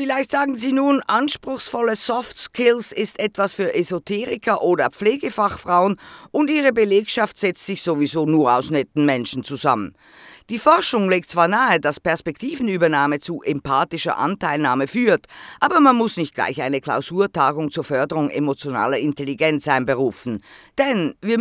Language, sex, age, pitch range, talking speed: German, female, 50-69, 150-220 Hz, 135 wpm